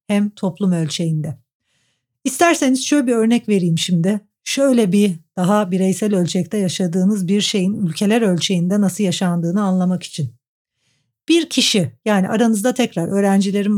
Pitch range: 180-220 Hz